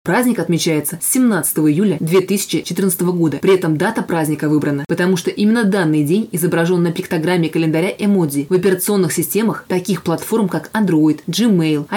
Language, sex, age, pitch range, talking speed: Russian, female, 20-39, 165-195 Hz, 145 wpm